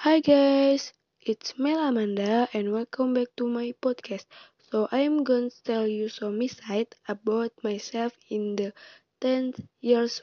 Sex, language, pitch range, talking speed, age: female, Indonesian, 205-250 Hz, 145 wpm, 20-39